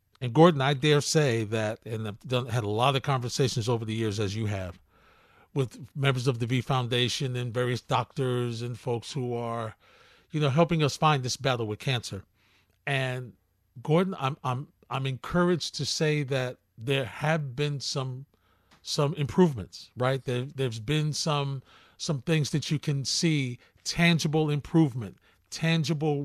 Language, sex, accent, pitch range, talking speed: English, male, American, 120-150 Hz, 160 wpm